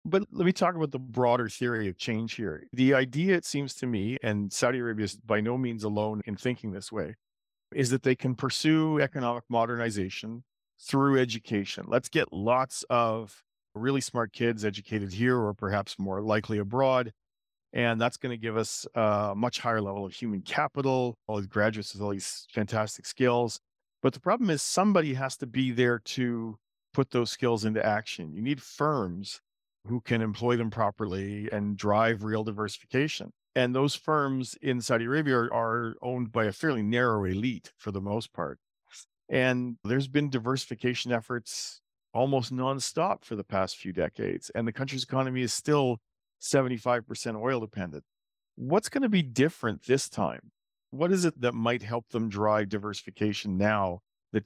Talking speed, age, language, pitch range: 175 wpm, 40-59, English, 105-130 Hz